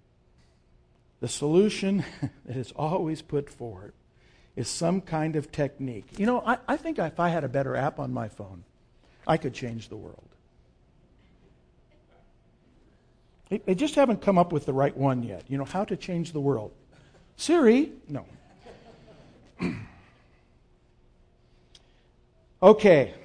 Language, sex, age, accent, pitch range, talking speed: English, male, 60-79, American, 130-205 Hz, 135 wpm